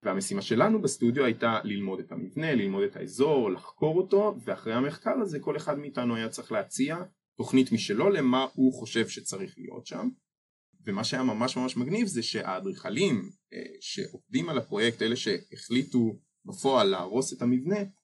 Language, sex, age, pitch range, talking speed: Hebrew, male, 20-39, 115-195 Hz, 150 wpm